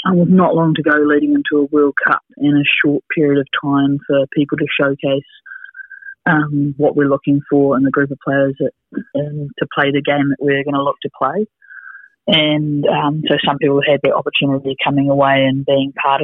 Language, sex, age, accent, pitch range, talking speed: English, female, 20-39, Australian, 135-150 Hz, 210 wpm